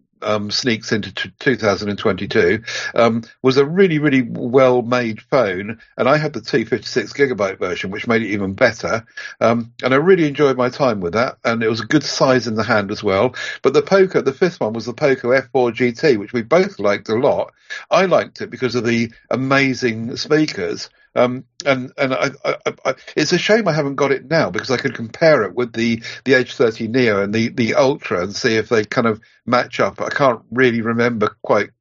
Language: English